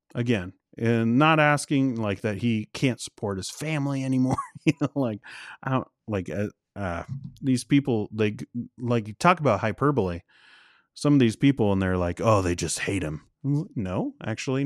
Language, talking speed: English, 170 wpm